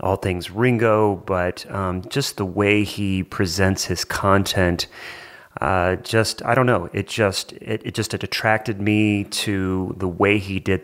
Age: 30-49